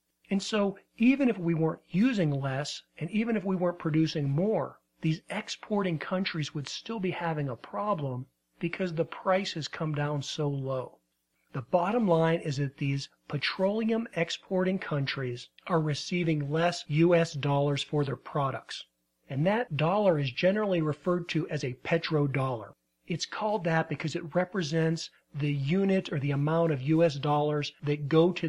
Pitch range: 145-180 Hz